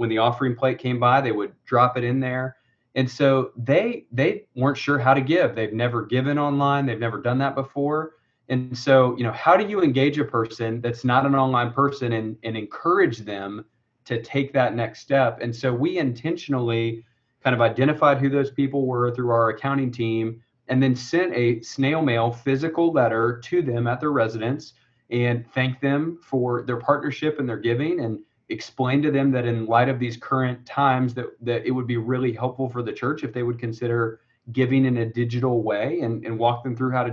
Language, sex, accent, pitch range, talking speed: English, male, American, 120-135 Hz, 205 wpm